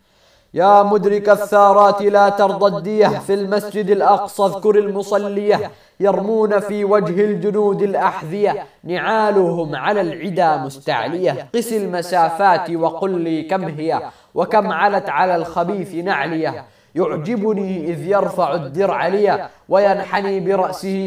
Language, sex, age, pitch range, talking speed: Arabic, male, 20-39, 175-200 Hz, 110 wpm